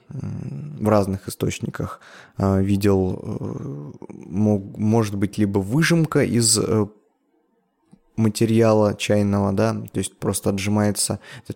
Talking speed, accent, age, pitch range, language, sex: 80 wpm, native, 20-39, 100-115 Hz, Russian, male